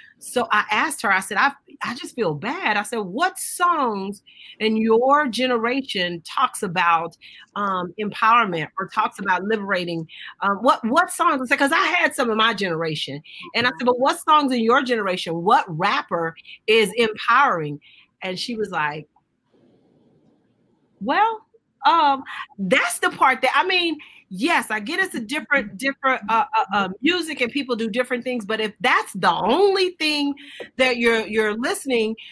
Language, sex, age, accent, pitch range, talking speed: English, female, 40-59, American, 210-280 Hz, 165 wpm